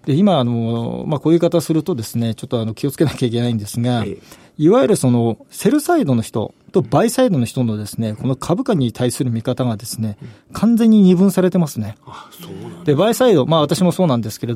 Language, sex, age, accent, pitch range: Japanese, male, 40-59, native, 120-175 Hz